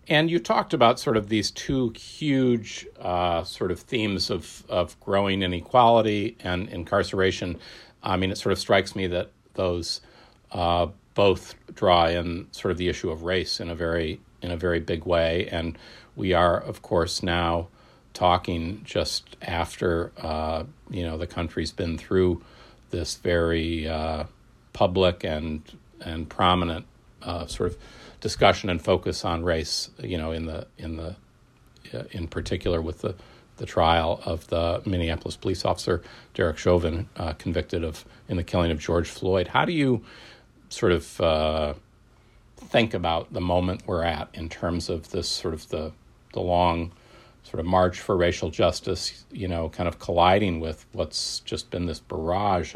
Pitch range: 85-100 Hz